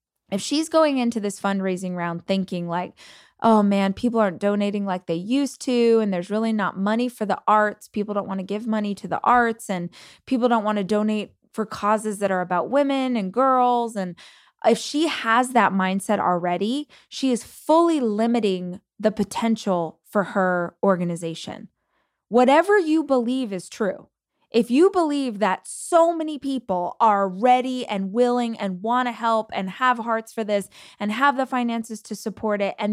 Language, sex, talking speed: English, female, 180 wpm